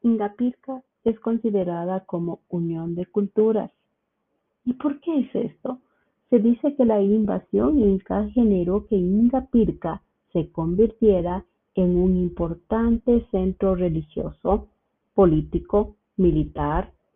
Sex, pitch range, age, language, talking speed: female, 170-230 Hz, 40-59, Spanish, 105 wpm